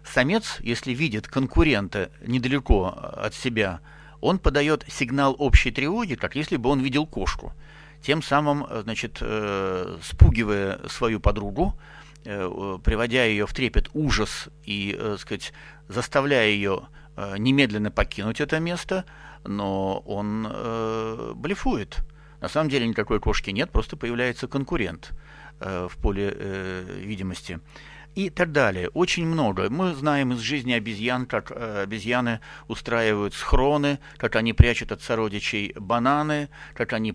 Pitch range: 105-140 Hz